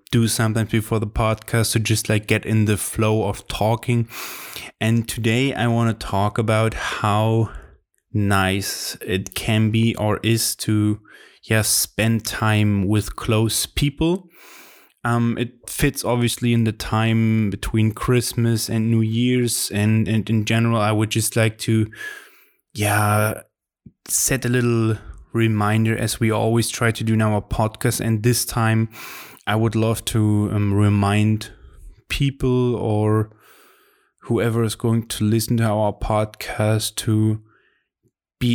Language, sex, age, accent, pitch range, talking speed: English, male, 20-39, German, 105-115 Hz, 145 wpm